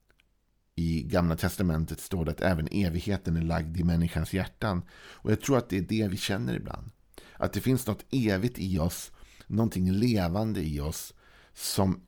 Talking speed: 165 wpm